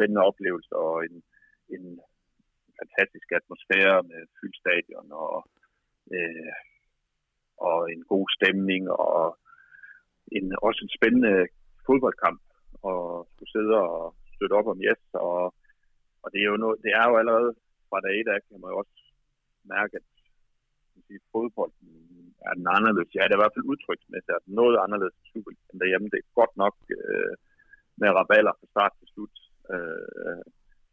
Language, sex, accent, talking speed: Danish, male, native, 160 wpm